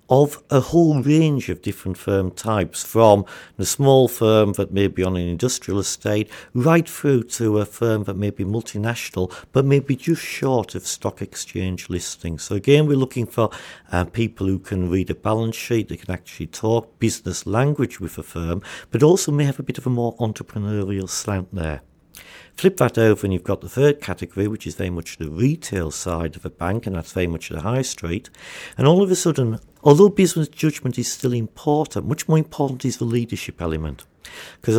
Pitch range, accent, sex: 95-135 Hz, British, male